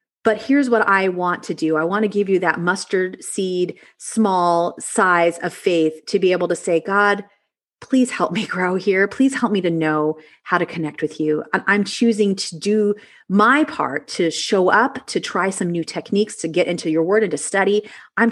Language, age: English, 30-49